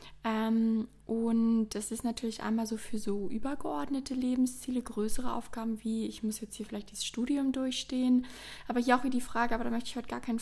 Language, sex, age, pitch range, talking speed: German, female, 20-39, 225-260 Hz, 195 wpm